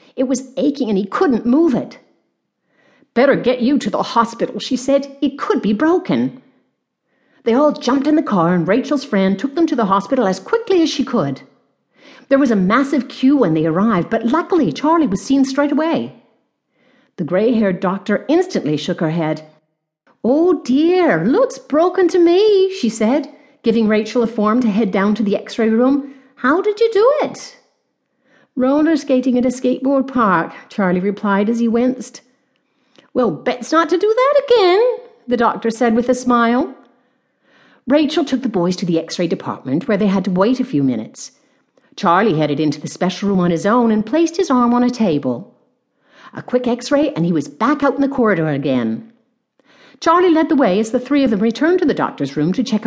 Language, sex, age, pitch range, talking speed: English, female, 50-69, 205-280 Hz, 190 wpm